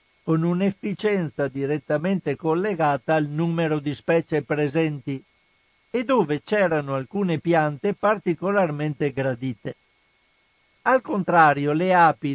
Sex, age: male, 50-69